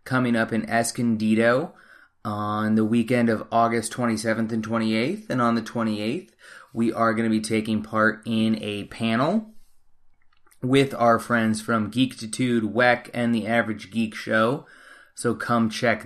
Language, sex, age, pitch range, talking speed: English, male, 20-39, 110-135 Hz, 150 wpm